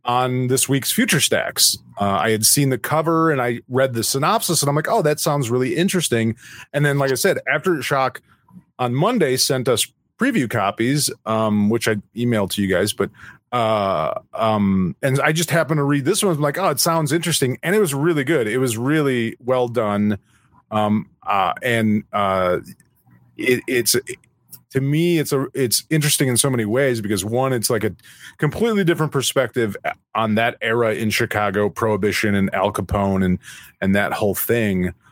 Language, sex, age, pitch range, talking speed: English, male, 30-49, 105-145 Hz, 190 wpm